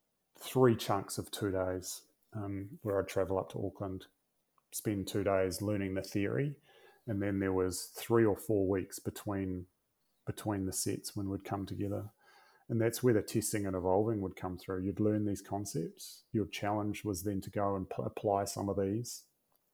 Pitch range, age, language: 95-110 Hz, 30-49, English